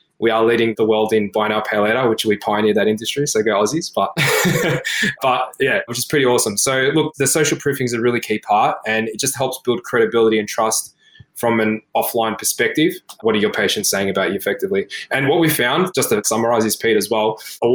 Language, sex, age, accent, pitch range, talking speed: English, male, 20-39, Australian, 110-125 Hz, 220 wpm